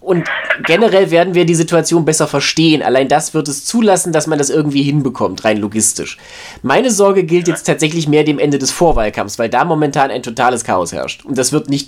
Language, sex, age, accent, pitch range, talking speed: German, male, 20-39, German, 140-175 Hz, 205 wpm